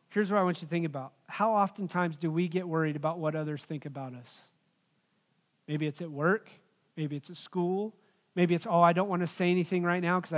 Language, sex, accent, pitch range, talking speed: English, male, American, 170-205 Hz, 230 wpm